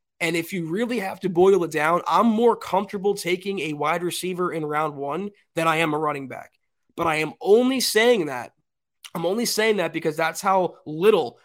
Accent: American